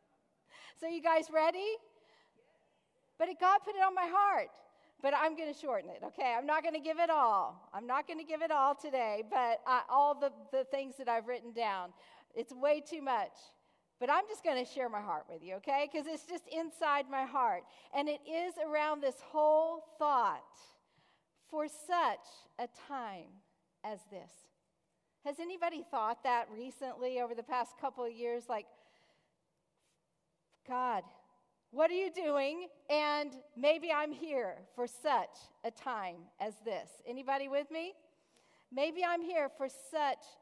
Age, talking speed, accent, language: 40-59, 165 wpm, American, English